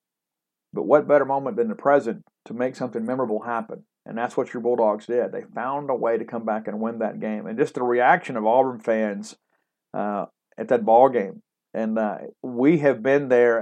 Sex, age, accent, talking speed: male, 50-69, American, 205 wpm